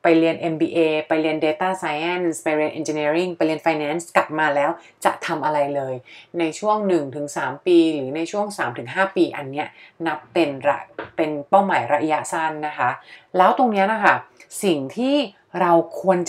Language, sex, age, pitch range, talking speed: English, female, 30-49, 150-195 Hz, 65 wpm